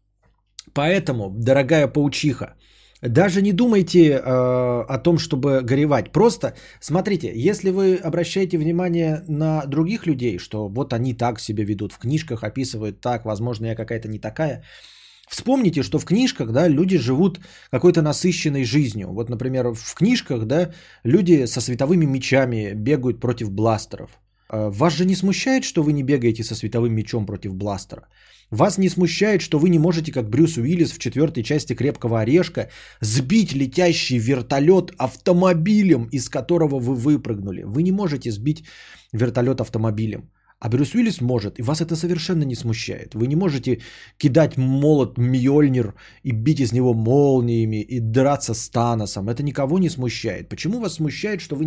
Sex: male